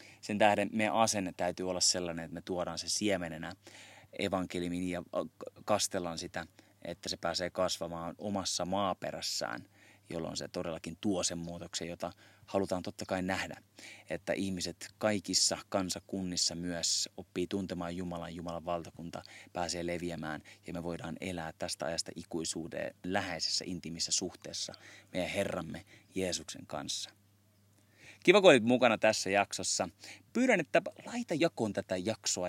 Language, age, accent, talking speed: Finnish, 30-49, native, 130 wpm